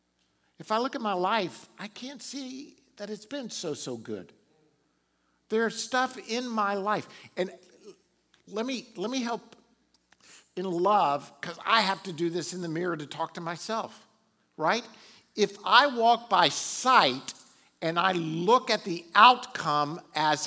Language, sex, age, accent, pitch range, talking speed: English, male, 50-69, American, 165-230 Hz, 160 wpm